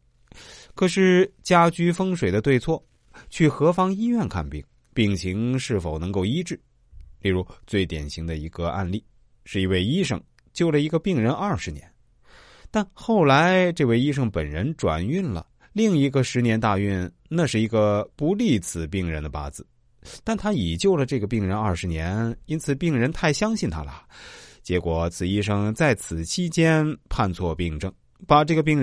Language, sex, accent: Chinese, male, native